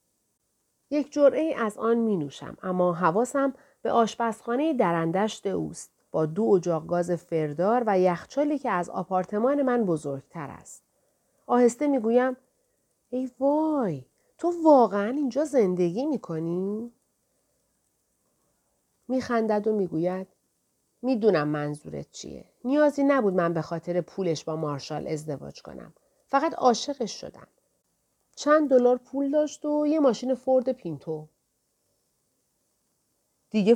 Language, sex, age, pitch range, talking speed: Persian, female, 40-59, 175-260 Hz, 110 wpm